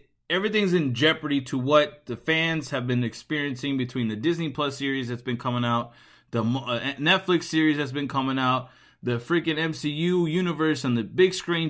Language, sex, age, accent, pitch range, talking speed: English, male, 20-39, American, 125-165 Hz, 175 wpm